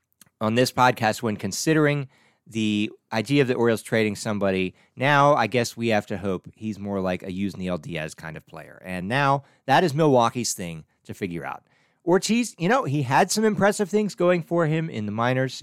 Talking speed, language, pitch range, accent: 200 wpm, English, 100-140 Hz, American